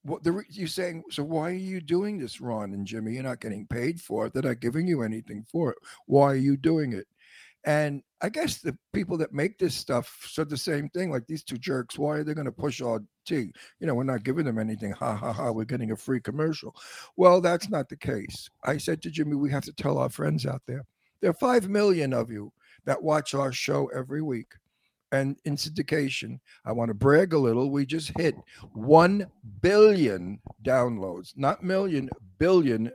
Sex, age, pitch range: male, 60-79, 125-160 Hz